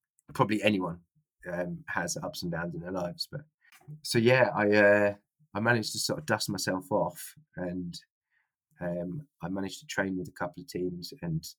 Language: English